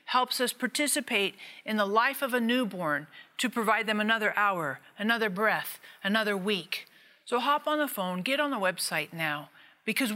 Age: 50-69